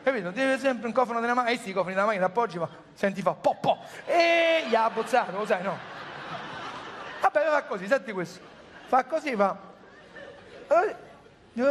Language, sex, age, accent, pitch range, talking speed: Italian, male, 50-69, native, 185-255 Hz, 200 wpm